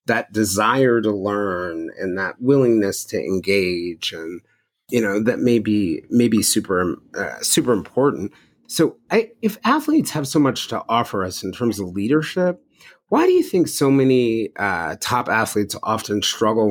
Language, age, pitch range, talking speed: English, 30-49, 105-150 Hz, 160 wpm